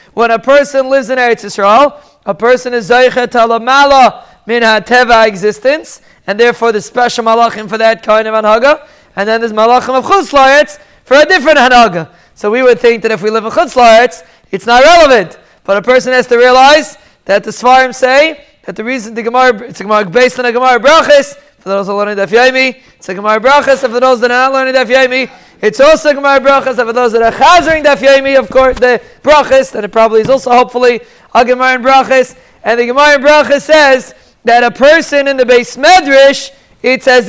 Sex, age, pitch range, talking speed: male, 20-39, 230-275 Hz, 205 wpm